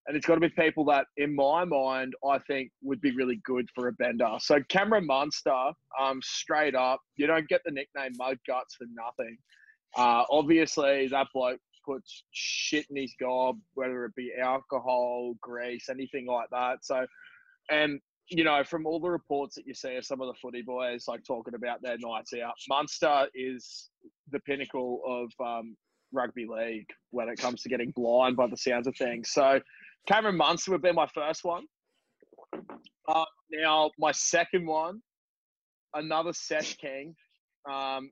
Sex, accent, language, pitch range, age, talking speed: male, Australian, English, 125-160 Hz, 20-39, 175 wpm